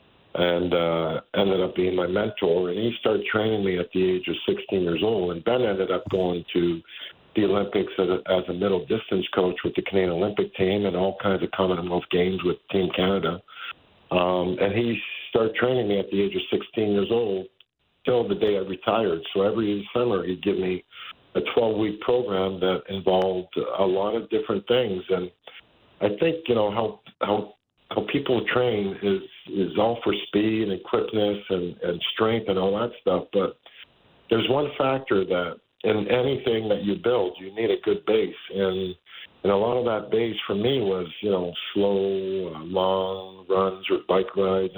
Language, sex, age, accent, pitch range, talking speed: English, male, 50-69, American, 95-110 Hz, 185 wpm